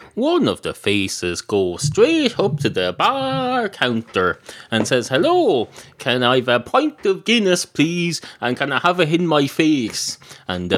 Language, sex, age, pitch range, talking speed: English, male, 30-49, 120-160 Hz, 180 wpm